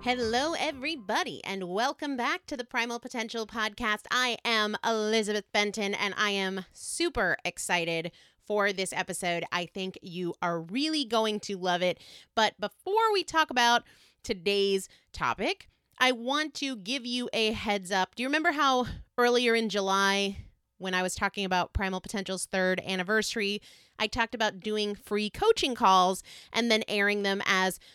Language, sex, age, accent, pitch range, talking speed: English, female, 30-49, American, 200-270 Hz, 160 wpm